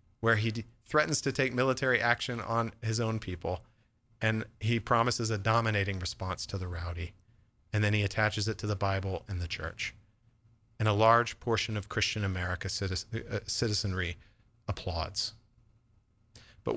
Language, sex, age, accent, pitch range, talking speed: English, male, 40-59, American, 105-125 Hz, 145 wpm